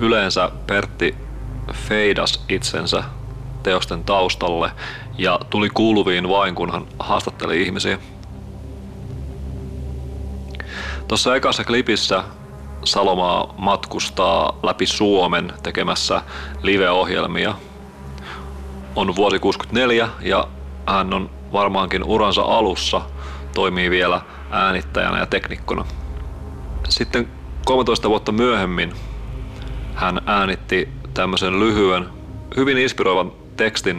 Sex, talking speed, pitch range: male, 85 wpm, 85-120 Hz